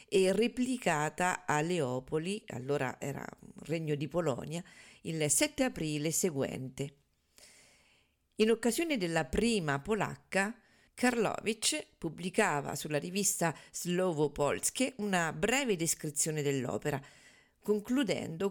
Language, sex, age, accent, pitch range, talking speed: Italian, female, 40-59, native, 150-215 Hz, 95 wpm